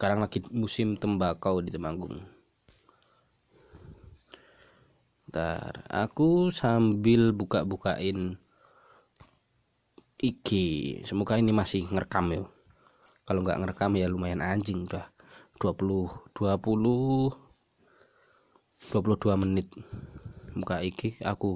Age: 20-39